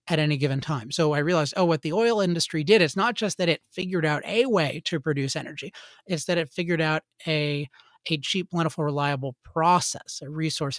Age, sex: 30-49, male